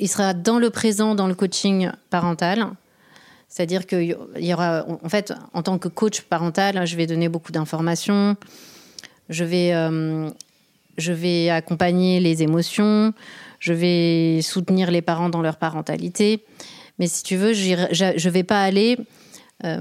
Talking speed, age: 145 wpm, 30-49